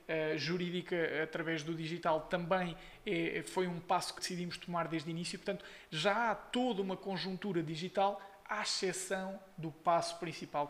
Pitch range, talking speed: 155-185 Hz, 145 wpm